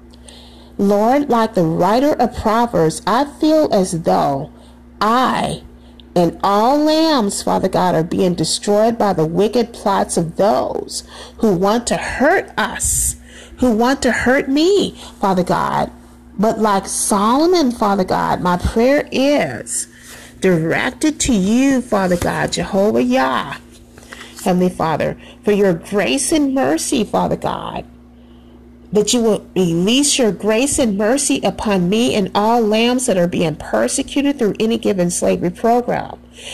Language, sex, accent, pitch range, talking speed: English, female, American, 175-245 Hz, 135 wpm